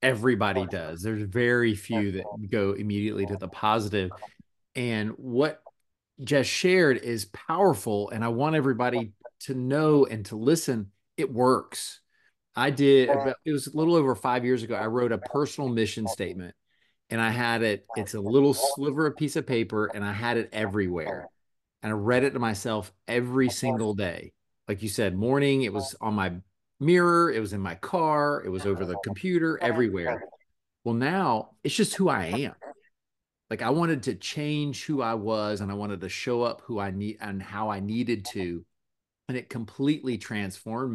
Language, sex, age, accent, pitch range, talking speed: English, male, 30-49, American, 105-135 Hz, 180 wpm